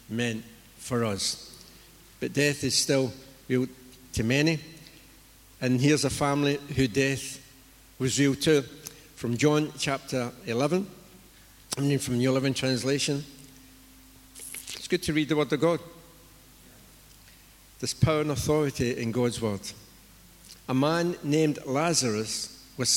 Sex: male